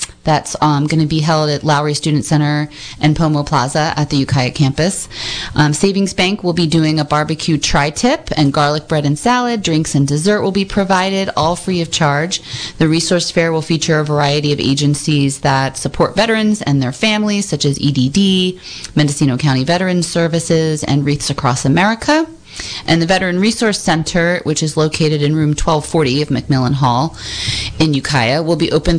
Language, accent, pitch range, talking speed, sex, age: English, American, 145-180 Hz, 175 wpm, female, 30-49